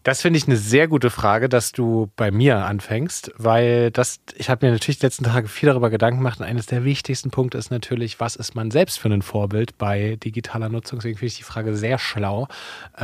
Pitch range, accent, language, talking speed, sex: 110-140 Hz, German, German, 225 wpm, male